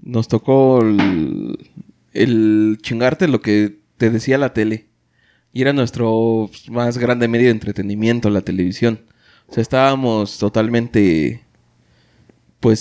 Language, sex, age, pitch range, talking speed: Spanish, male, 30-49, 110-150 Hz, 120 wpm